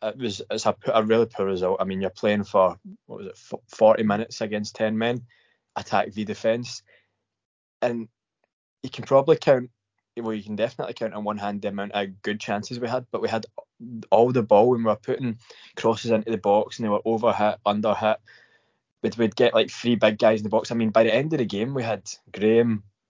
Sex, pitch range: male, 100-120 Hz